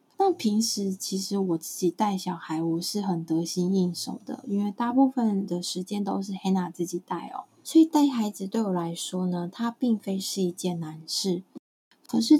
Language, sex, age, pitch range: Chinese, female, 20-39, 185-240 Hz